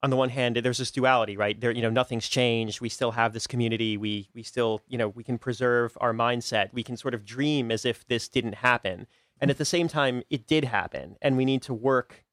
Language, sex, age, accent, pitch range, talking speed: English, male, 30-49, American, 110-130 Hz, 250 wpm